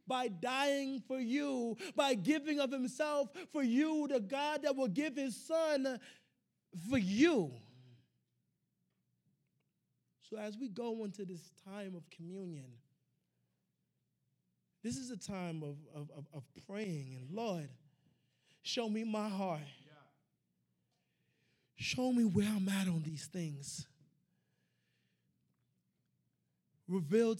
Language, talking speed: English, 110 wpm